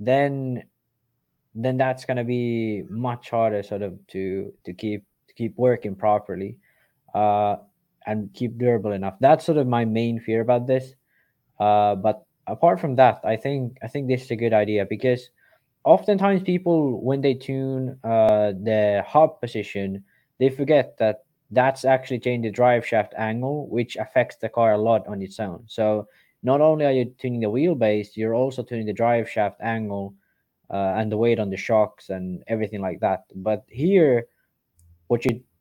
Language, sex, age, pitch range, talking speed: English, male, 20-39, 105-130 Hz, 170 wpm